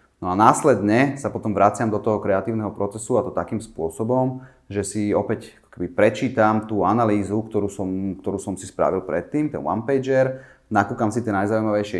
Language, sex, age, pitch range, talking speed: Slovak, male, 30-49, 95-120 Hz, 165 wpm